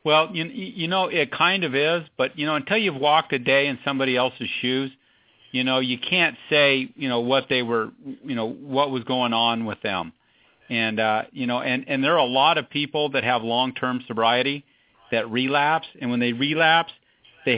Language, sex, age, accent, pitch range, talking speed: English, male, 40-59, American, 120-140 Hz, 210 wpm